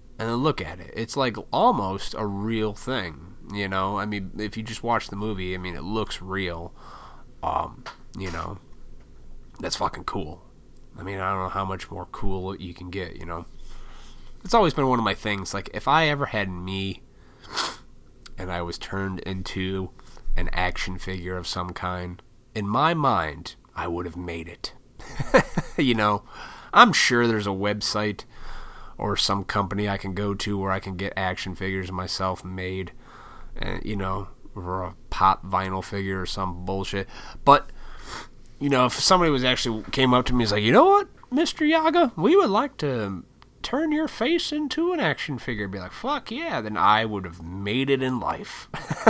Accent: American